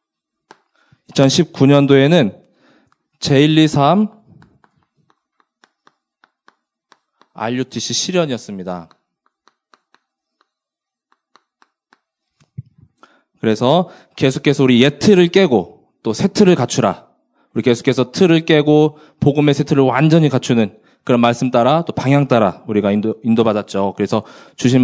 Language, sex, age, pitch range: Korean, male, 20-39, 115-170 Hz